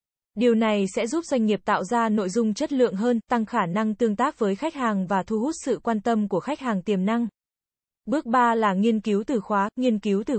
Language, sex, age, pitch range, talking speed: Vietnamese, female, 20-39, 205-245 Hz, 245 wpm